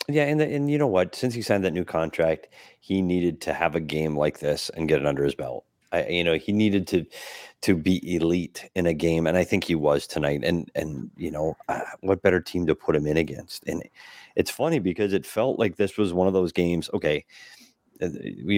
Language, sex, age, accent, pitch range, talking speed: English, male, 30-49, American, 80-100 Hz, 235 wpm